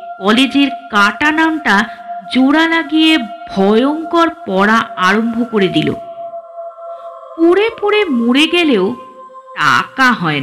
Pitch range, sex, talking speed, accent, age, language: 245-345 Hz, female, 85 wpm, native, 50-69, Bengali